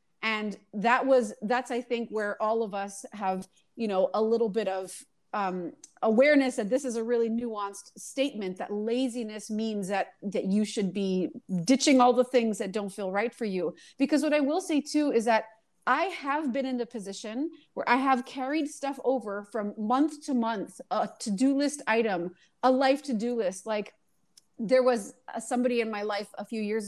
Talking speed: 190 wpm